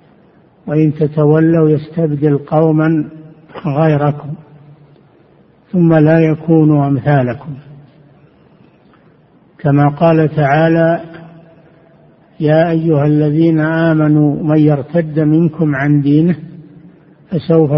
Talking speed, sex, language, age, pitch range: 75 wpm, male, Arabic, 60-79, 145-160 Hz